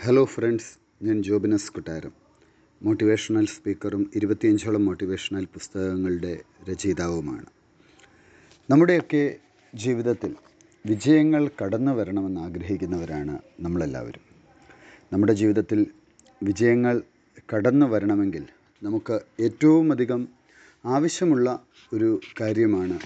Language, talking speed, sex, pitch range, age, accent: Malayalam, 75 wpm, male, 105-145 Hz, 30-49, native